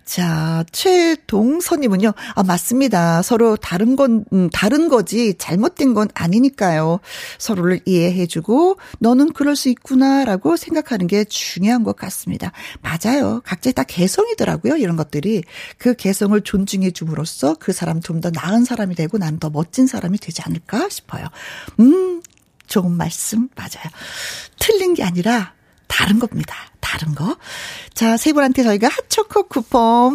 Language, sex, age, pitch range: Korean, female, 40-59, 180-270 Hz